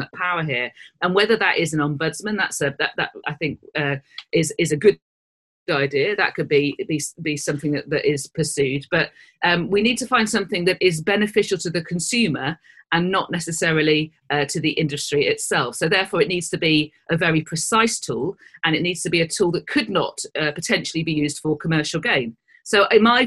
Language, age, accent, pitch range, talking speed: English, 40-59, British, 155-205 Hz, 210 wpm